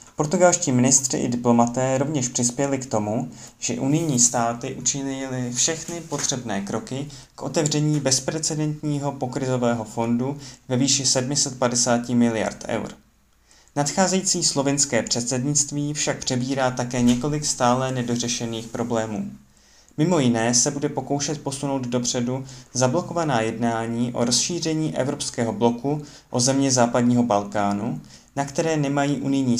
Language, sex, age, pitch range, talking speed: Czech, male, 20-39, 115-140 Hz, 115 wpm